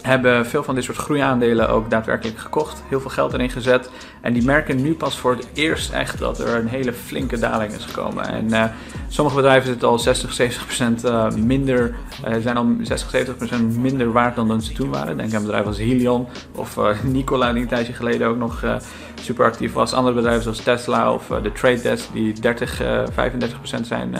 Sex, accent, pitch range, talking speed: male, Dutch, 115-130 Hz, 210 wpm